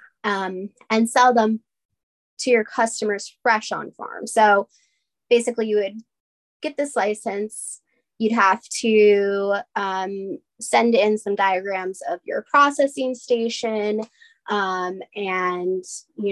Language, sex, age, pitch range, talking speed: English, female, 20-39, 190-230 Hz, 120 wpm